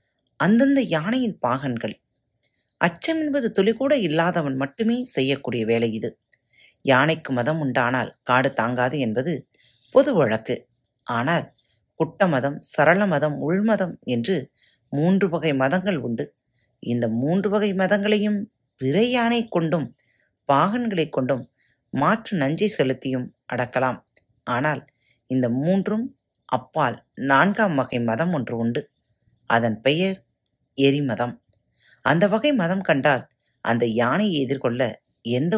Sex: female